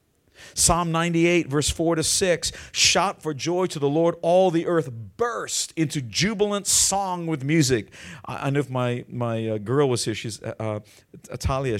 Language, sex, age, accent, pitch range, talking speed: English, male, 50-69, American, 125-180 Hz, 180 wpm